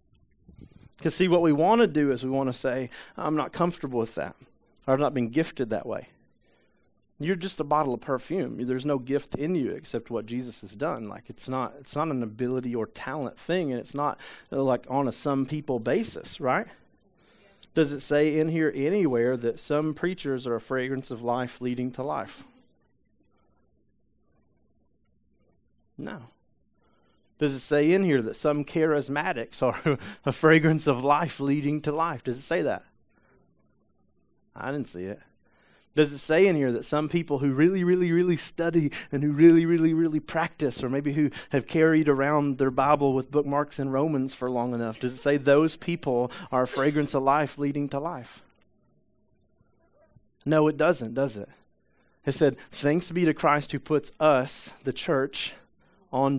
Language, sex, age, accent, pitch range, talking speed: English, male, 40-59, American, 130-155 Hz, 180 wpm